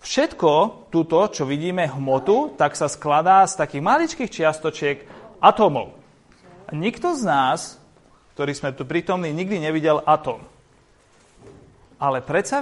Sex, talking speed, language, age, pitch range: male, 120 wpm, Slovak, 30-49, 150-220 Hz